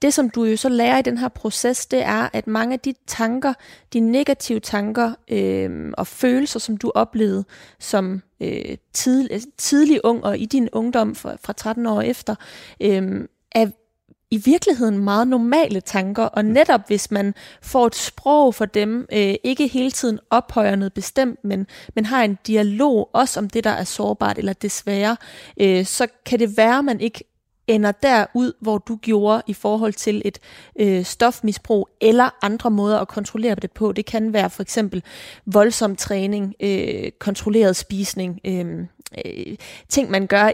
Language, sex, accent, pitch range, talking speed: Danish, female, native, 205-245 Hz, 165 wpm